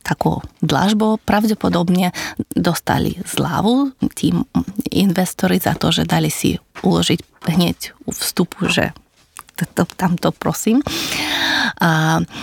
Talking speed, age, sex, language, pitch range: 90 wpm, 20-39, female, Slovak, 155-185 Hz